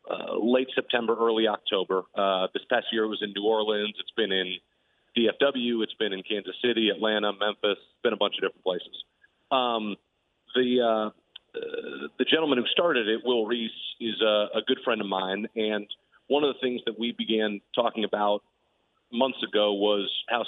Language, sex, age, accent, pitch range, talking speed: English, male, 40-59, American, 105-120 Hz, 185 wpm